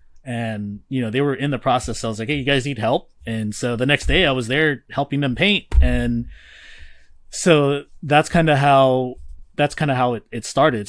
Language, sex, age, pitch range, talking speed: English, male, 20-39, 110-145 Hz, 225 wpm